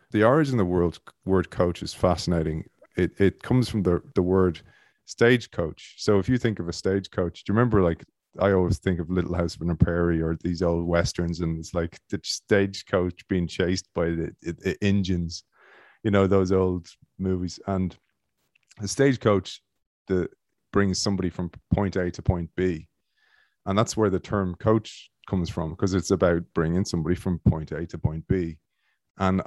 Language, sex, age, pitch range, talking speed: English, male, 30-49, 85-100 Hz, 180 wpm